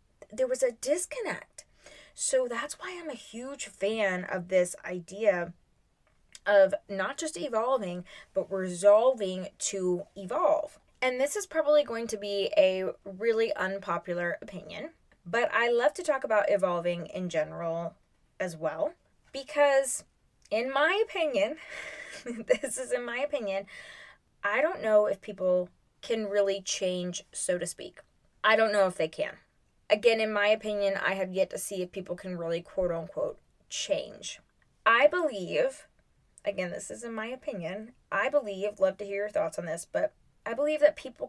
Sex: female